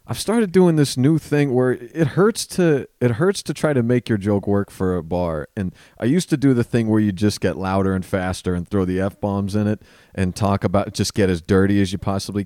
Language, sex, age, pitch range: English, male, 40-59, 100-140 Hz